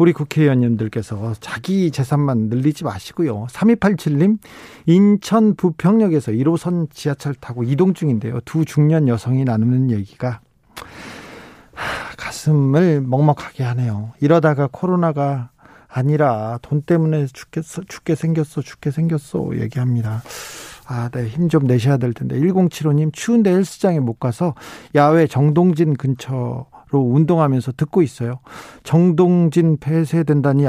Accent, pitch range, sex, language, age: native, 130-170 Hz, male, Korean, 40-59